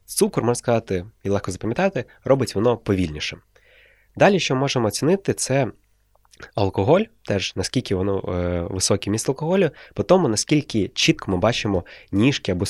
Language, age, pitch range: Ukrainian, 20-39, 95-120 Hz